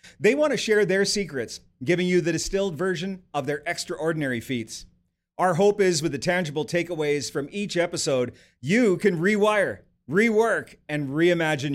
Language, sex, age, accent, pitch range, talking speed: English, male, 40-59, American, 155-205 Hz, 160 wpm